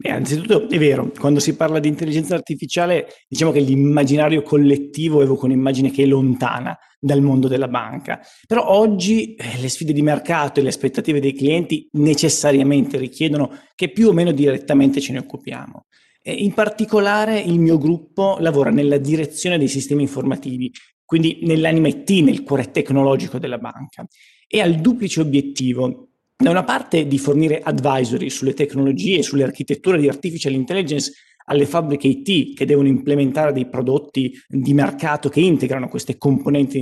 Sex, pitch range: male, 135-160 Hz